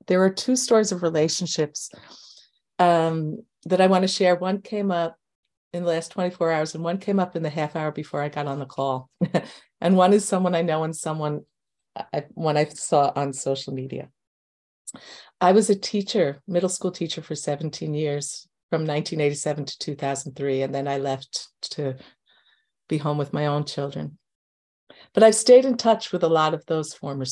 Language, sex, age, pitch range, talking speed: English, female, 50-69, 150-185 Hz, 185 wpm